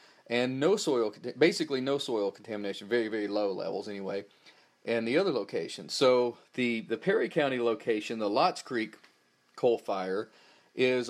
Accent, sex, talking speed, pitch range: American, male, 150 wpm, 110-135 Hz